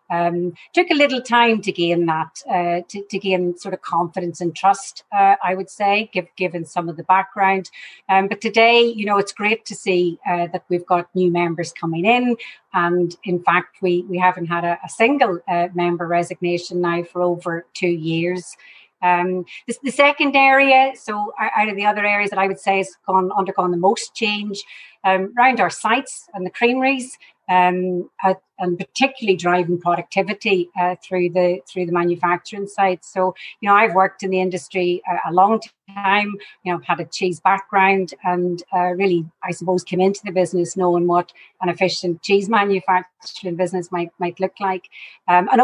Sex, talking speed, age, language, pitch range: female, 185 wpm, 30-49, English, 175-200 Hz